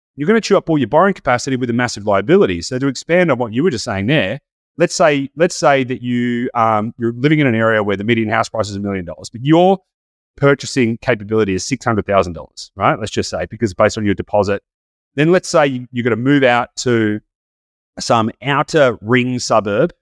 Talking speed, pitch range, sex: 220 wpm, 110-145 Hz, male